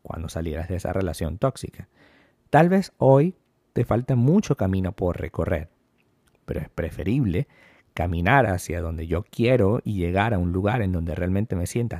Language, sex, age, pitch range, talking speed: Spanish, male, 50-69, 95-140 Hz, 165 wpm